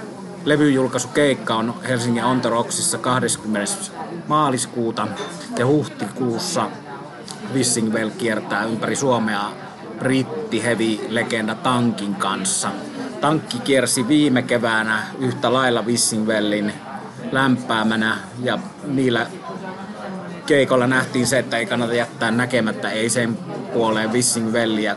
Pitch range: 110-135 Hz